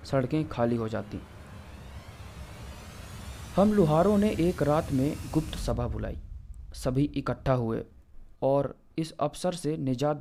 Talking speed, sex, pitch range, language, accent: 125 wpm, male, 95-155 Hz, Hindi, native